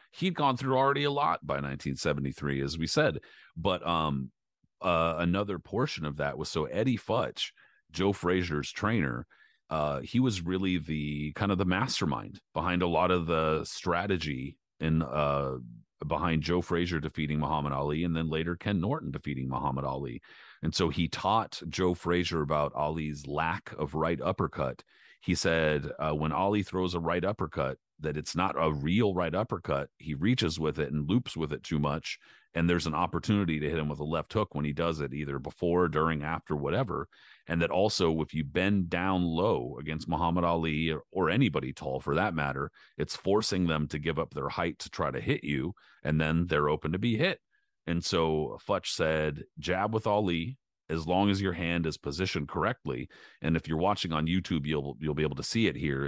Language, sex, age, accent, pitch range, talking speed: English, male, 40-59, American, 75-90 Hz, 195 wpm